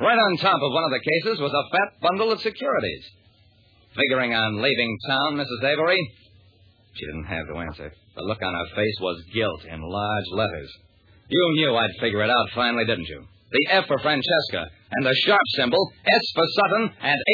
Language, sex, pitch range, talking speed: English, male, 100-160 Hz, 195 wpm